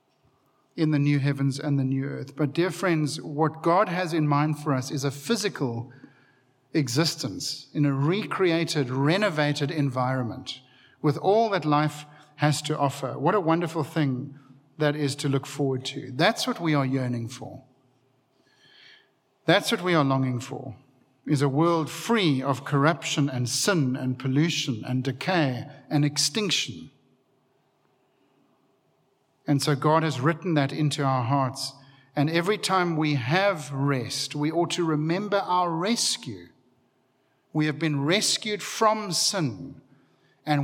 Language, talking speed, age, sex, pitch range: English, 145 wpm, 50-69, male, 135-155 Hz